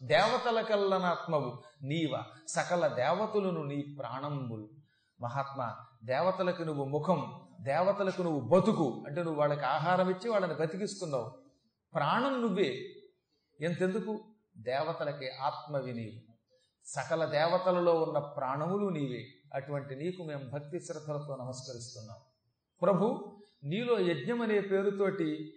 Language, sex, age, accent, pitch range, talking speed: Telugu, male, 40-59, native, 145-205 Hz, 95 wpm